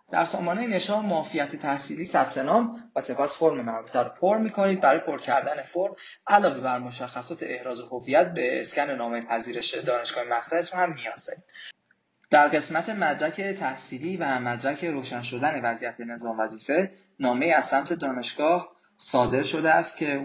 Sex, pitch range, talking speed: male, 115-165 Hz, 150 wpm